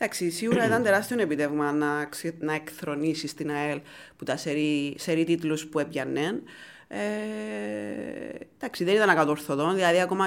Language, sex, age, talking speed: Greek, female, 30-49, 135 wpm